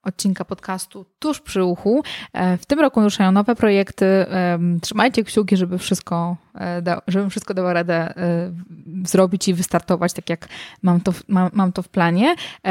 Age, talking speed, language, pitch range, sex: 20-39, 135 wpm, Polish, 180-210 Hz, female